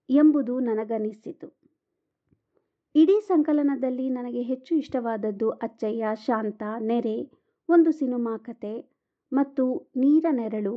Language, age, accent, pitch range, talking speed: Kannada, 50-69, native, 235-300 Hz, 90 wpm